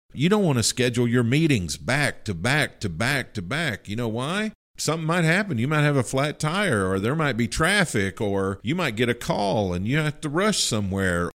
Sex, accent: male, American